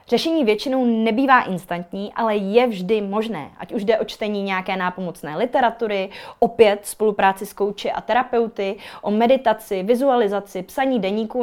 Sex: female